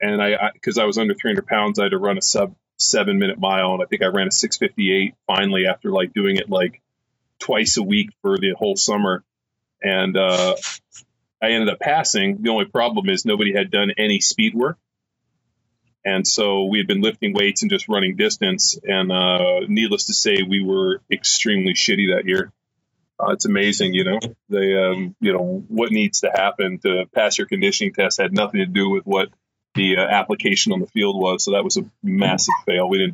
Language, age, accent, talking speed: English, 30-49, American, 210 wpm